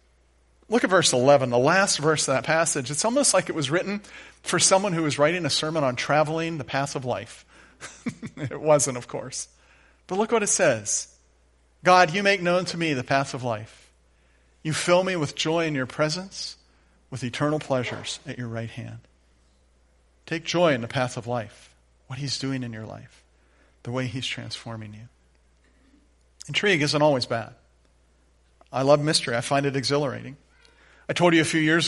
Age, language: 40-59, English